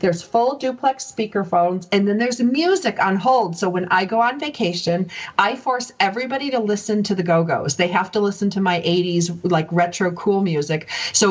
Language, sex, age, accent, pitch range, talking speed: English, female, 40-59, American, 180-235 Hz, 190 wpm